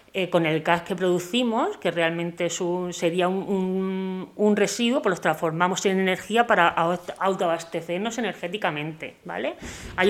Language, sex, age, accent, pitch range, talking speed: Spanish, female, 30-49, Spanish, 170-205 Hz, 130 wpm